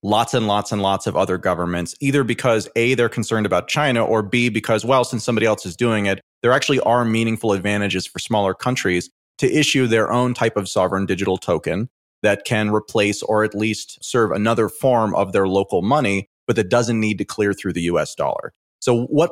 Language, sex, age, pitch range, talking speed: English, male, 30-49, 100-130 Hz, 210 wpm